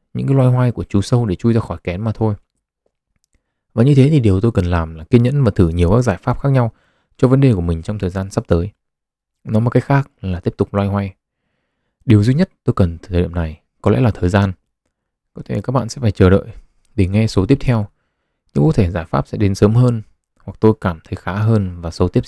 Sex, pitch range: male, 90-115 Hz